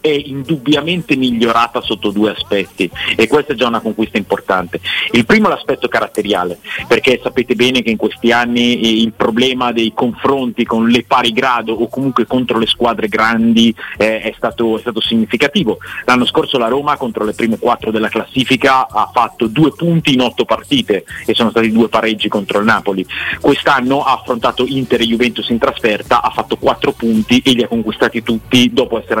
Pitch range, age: 110-130 Hz, 30-49